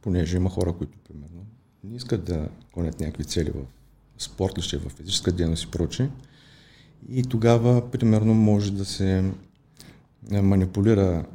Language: Bulgarian